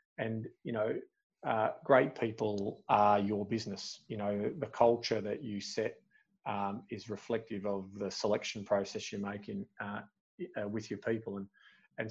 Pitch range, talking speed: 100-115 Hz, 160 wpm